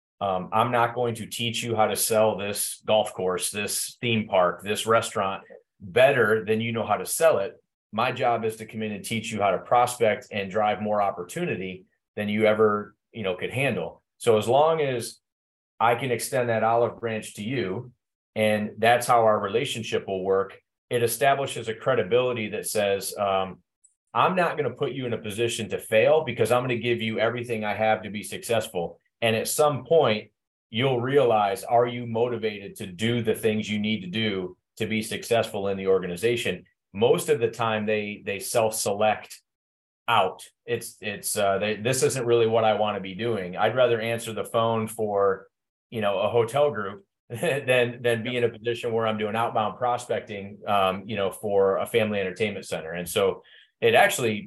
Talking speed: 195 wpm